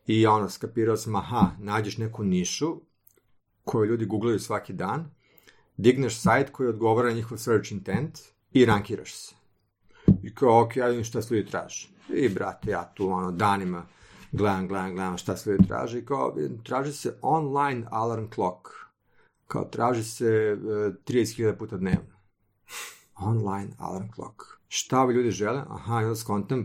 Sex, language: male, Croatian